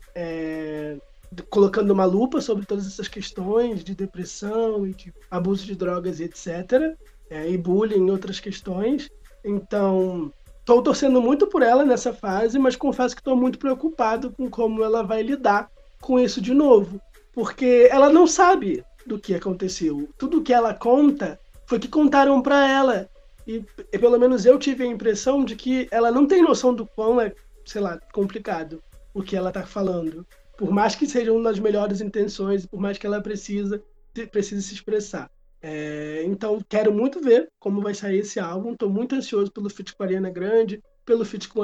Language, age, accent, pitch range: Portuguese, 20-39, Brazilian, 190-245 Hz